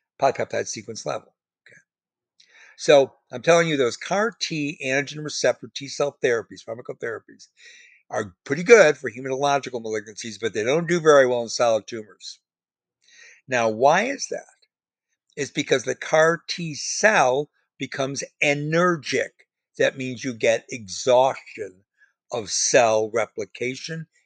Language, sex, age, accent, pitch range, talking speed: English, male, 60-79, American, 120-170 Hz, 120 wpm